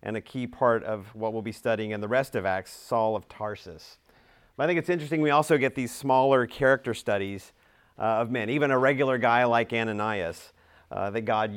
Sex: male